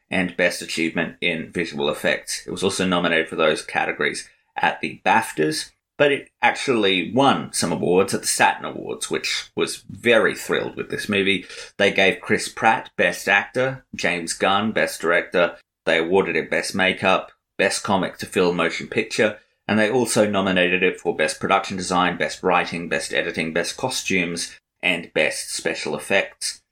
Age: 30-49